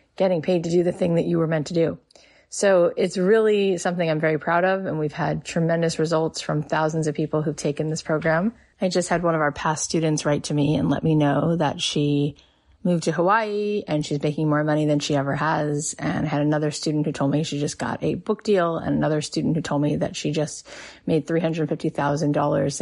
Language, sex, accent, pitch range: English, female, American, 150-175 Hz